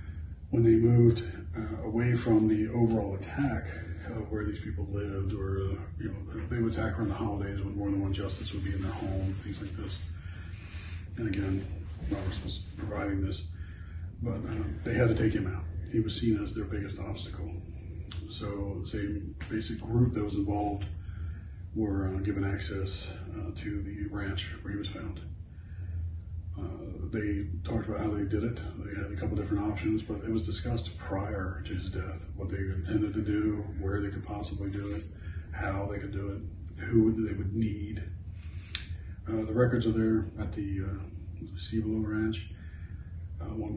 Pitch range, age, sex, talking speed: 85-105 Hz, 40-59, male, 180 wpm